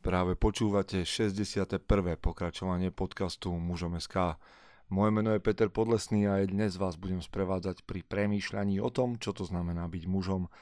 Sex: male